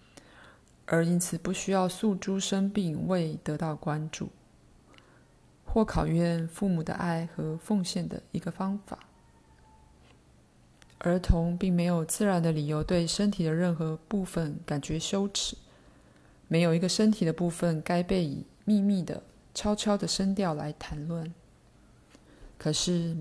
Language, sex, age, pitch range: Chinese, female, 20-39, 160-190 Hz